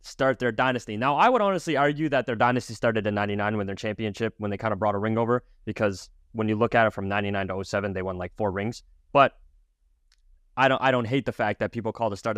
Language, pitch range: English, 105-125 Hz